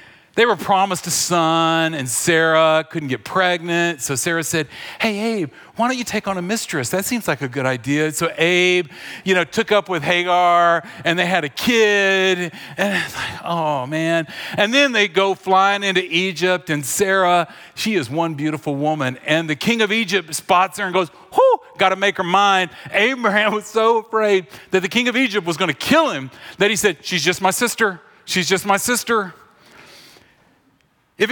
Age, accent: 40-59, American